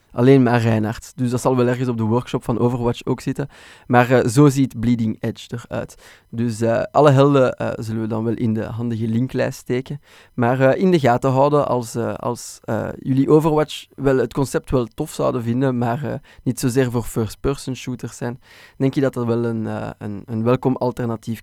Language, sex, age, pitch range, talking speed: Dutch, male, 20-39, 115-135 Hz, 205 wpm